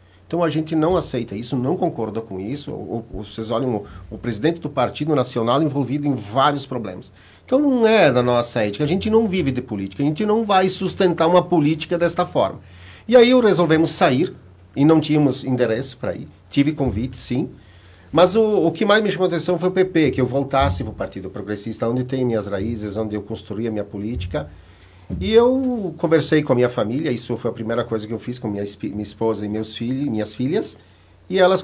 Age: 50-69